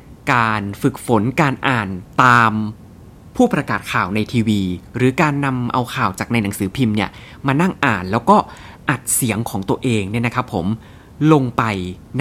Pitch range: 105-140 Hz